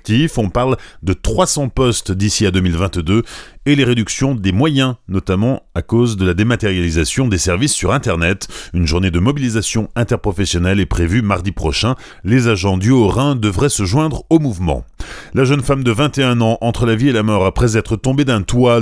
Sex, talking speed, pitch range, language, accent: male, 185 wpm, 95-125 Hz, French, French